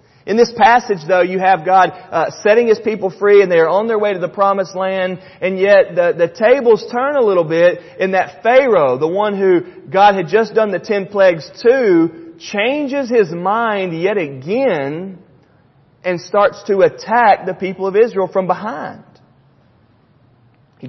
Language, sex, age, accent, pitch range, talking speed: English, male, 30-49, American, 140-205 Hz, 170 wpm